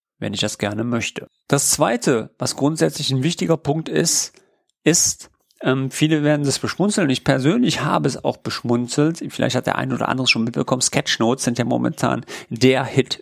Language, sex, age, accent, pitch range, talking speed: German, male, 40-59, German, 125-160 Hz, 180 wpm